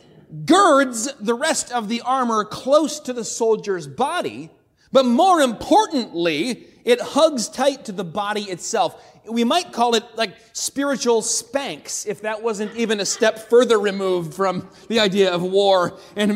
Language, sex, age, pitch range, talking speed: English, male, 30-49, 205-265 Hz, 155 wpm